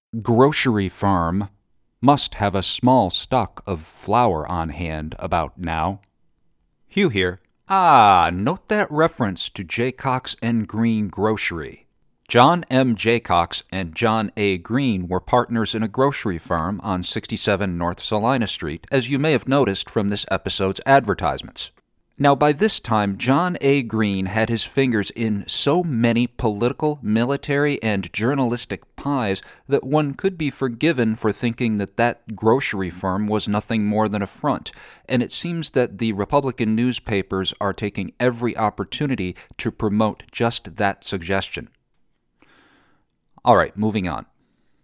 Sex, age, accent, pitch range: male, 50-69, American, 95-130 Hz